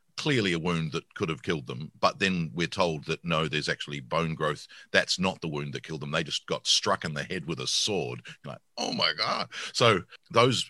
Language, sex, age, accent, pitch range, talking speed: English, male, 50-69, Australian, 70-85 Hz, 235 wpm